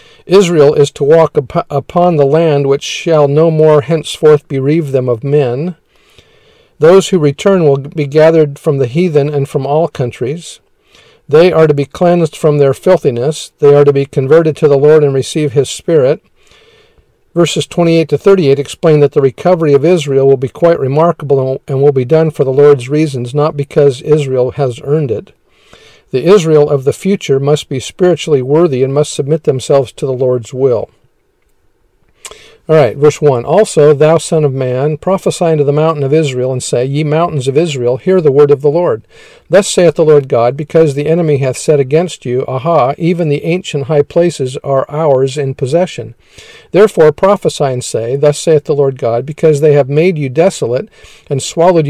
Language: English